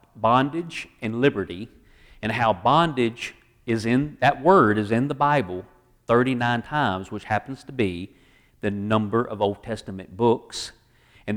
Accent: American